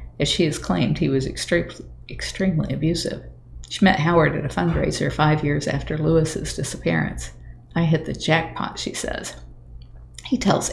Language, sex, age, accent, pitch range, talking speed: English, female, 50-69, American, 120-165 Hz, 155 wpm